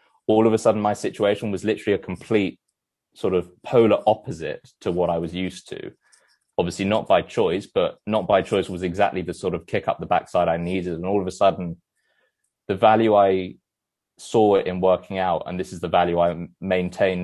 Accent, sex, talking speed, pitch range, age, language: British, male, 200 wpm, 85-100 Hz, 20-39, English